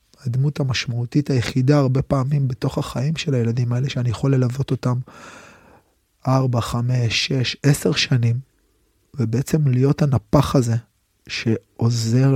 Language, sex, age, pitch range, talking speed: Hebrew, male, 30-49, 120-140 Hz, 115 wpm